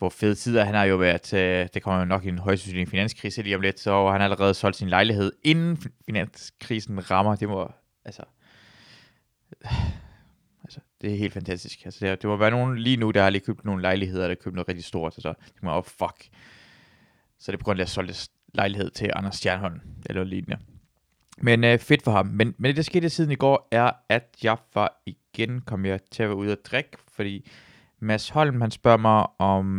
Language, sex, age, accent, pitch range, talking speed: Danish, male, 20-39, native, 95-120 Hz, 220 wpm